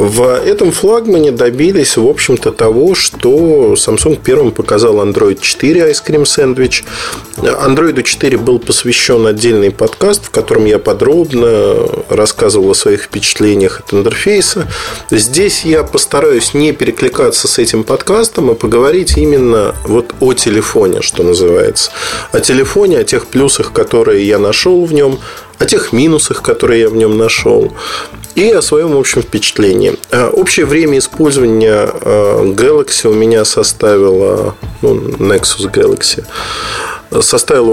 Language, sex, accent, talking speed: Russian, male, native, 130 wpm